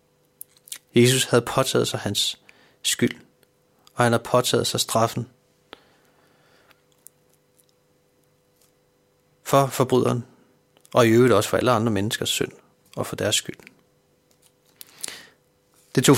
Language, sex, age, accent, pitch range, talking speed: Danish, male, 30-49, native, 115-135 Hz, 105 wpm